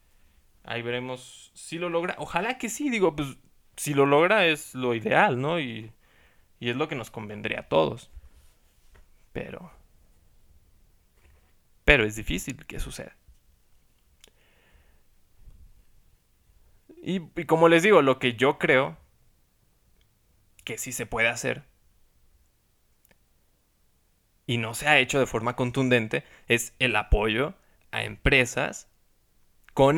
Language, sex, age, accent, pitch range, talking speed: Spanish, male, 20-39, Mexican, 95-140 Hz, 120 wpm